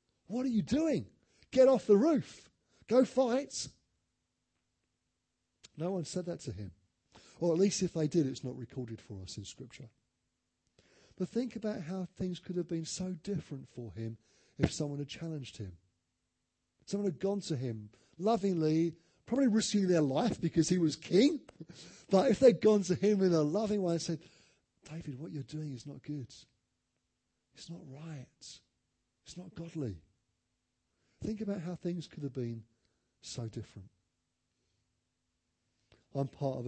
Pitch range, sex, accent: 120-170 Hz, male, British